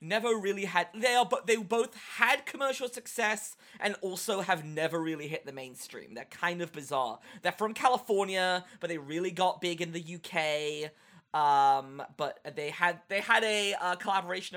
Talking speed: 175 wpm